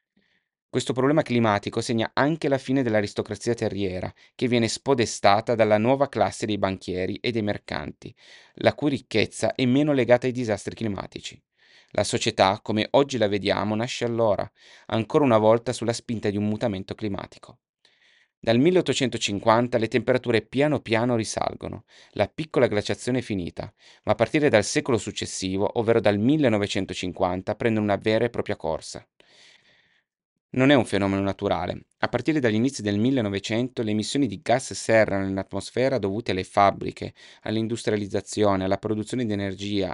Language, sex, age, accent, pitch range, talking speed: Italian, male, 30-49, native, 100-120 Hz, 145 wpm